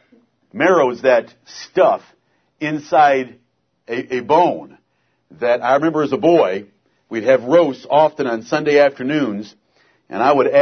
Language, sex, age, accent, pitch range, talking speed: English, male, 60-79, American, 145-235 Hz, 130 wpm